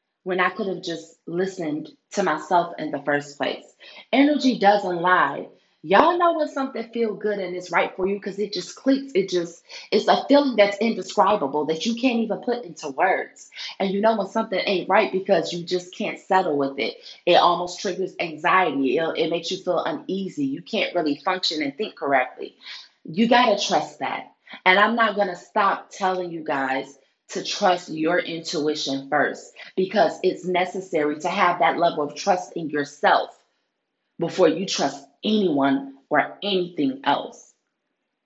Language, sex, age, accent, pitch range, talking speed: English, female, 30-49, American, 175-225 Hz, 175 wpm